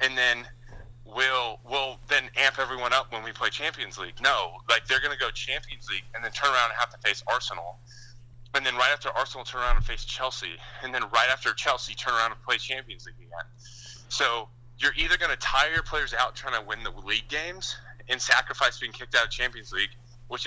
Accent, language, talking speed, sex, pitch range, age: American, English, 225 wpm, male, 120-130 Hz, 30-49